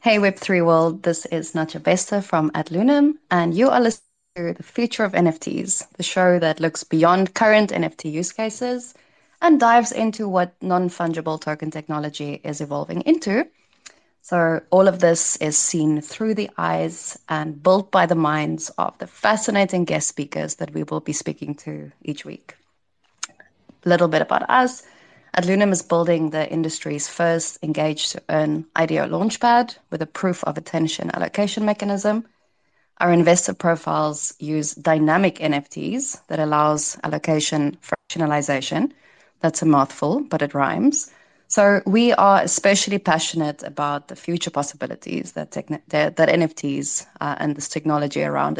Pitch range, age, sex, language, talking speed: 155-205 Hz, 20-39, female, English, 145 wpm